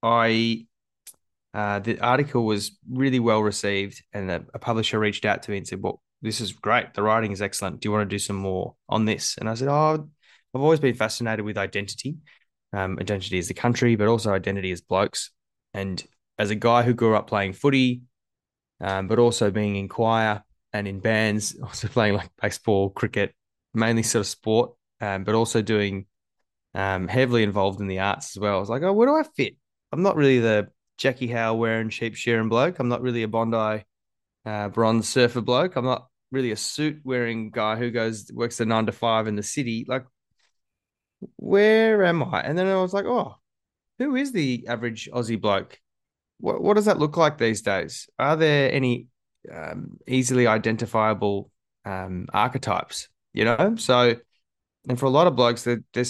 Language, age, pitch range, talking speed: English, 20-39, 105-125 Hz, 195 wpm